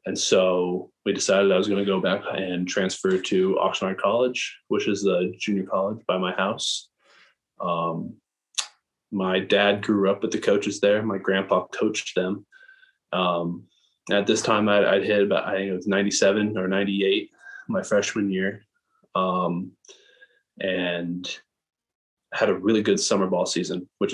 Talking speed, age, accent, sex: 155 wpm, 20-39, American, male